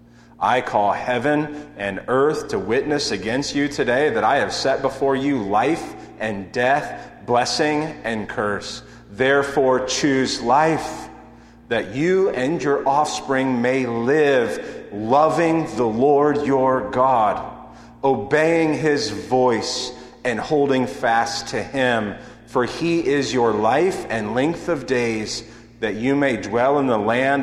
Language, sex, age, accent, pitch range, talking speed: English, male, 40-59, American, 110-130 Hz, 135 wpm